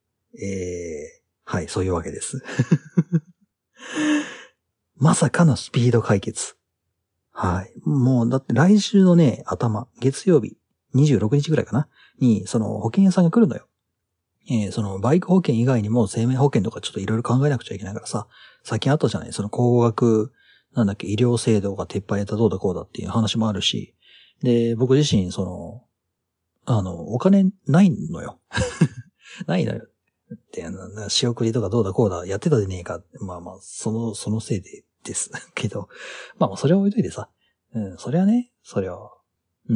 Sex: male